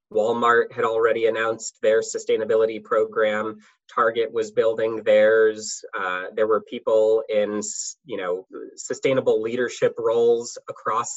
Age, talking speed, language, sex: 20-39, 120 wpm, English, male